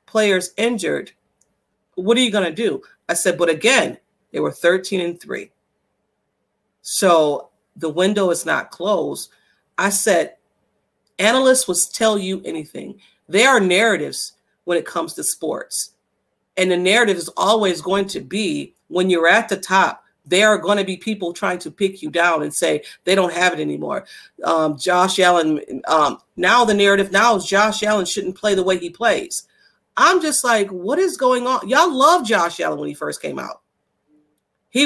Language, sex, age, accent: English, female, 40-59, American